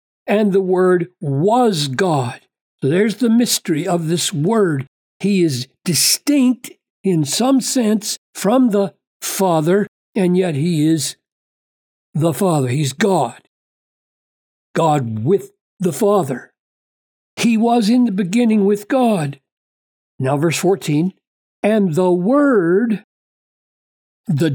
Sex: male